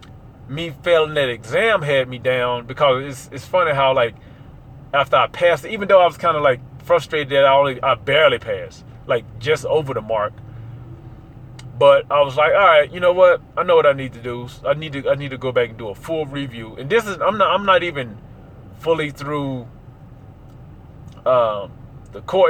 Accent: American